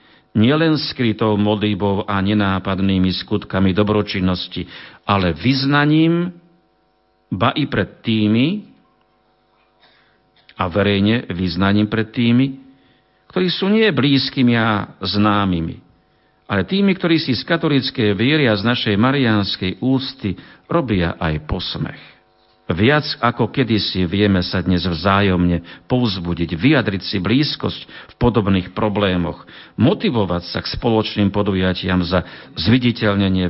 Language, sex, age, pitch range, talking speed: Slovak, male, 50-69, 95-135 Hz, 105 wpm